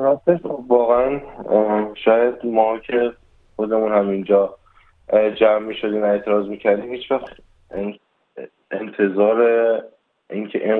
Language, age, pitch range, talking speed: Persian, 20-39, 95-105 Hz, 85 wpm